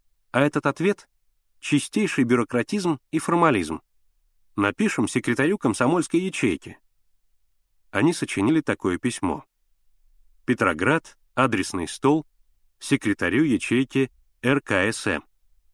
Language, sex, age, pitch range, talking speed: Russian, male, 30-49, 105-155 Hz, 80 wpm